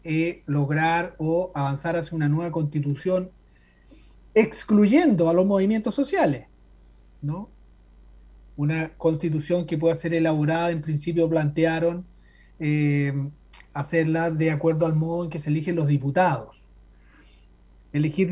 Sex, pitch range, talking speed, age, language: male, 140-175 Hz, 110 wpm, 30-49, Spanish